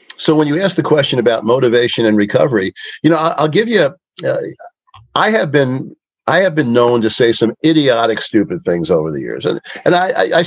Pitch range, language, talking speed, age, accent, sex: 140-205 Hz, English, 205 wpm, 50-69, American, male